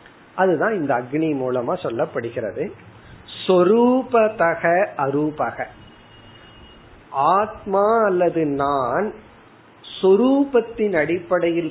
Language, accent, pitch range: Tamil, native, 135-195 Hz